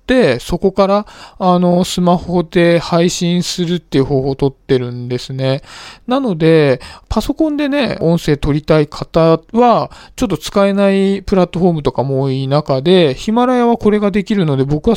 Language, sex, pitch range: Japanese, male, 140-195 Hz